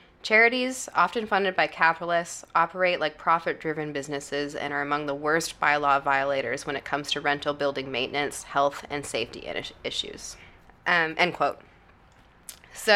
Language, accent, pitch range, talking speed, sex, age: English, American, 140-160 Hz, 145 wpm, female, 20-39